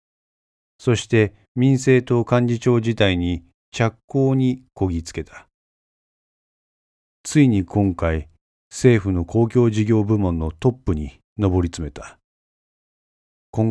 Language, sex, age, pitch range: Japanese, male, 40-59, 85-115 Hz